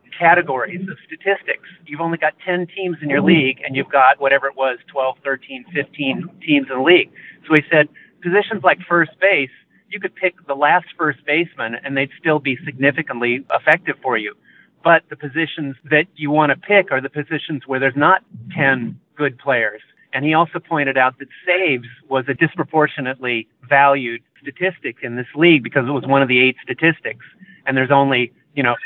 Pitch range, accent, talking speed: 130-165 Hz, American, 190 wpm